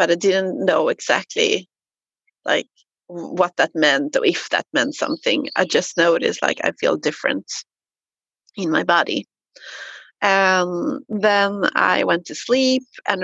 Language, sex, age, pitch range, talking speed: English, female, 30-49, 190-255 Hz, 140 wpm